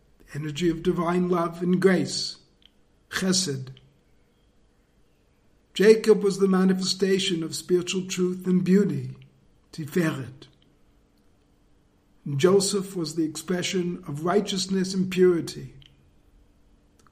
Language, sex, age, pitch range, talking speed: English, male, 50-69, 145-190 Hz, 95 wpm